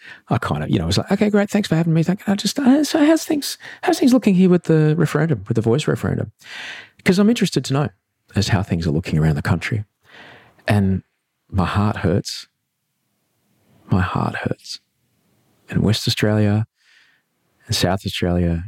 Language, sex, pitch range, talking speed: English, male, 80-115 Hz, 195 wpm